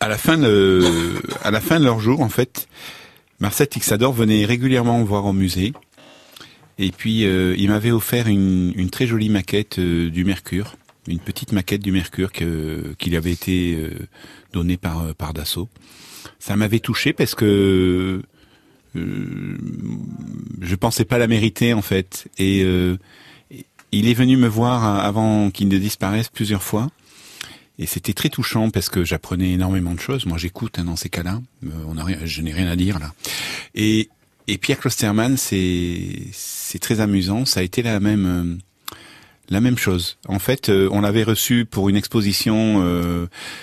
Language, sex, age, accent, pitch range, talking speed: French, male, 40-59, French, 90-110 Hz, 170 wpm